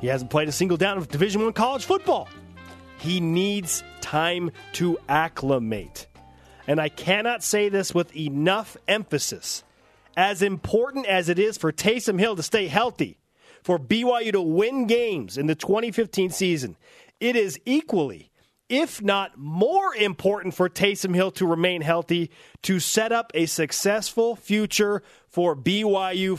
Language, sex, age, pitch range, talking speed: English, male, 30-49, 165-210 Hz, 150 wpm